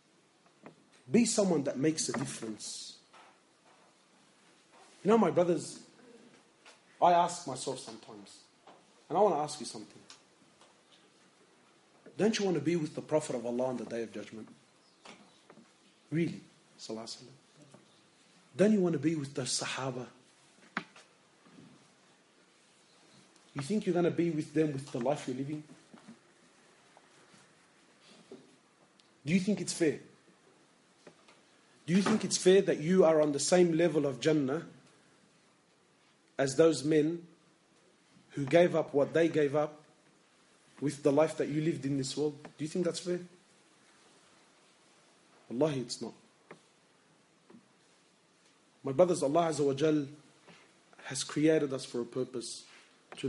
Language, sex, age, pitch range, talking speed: English, male, 40-59, 130-170 Hz, 130 wpm